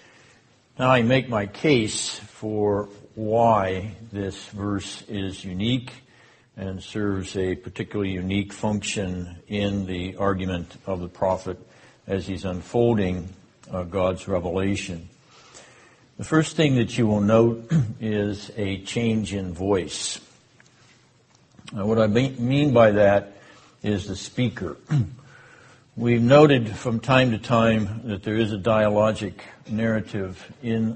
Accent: American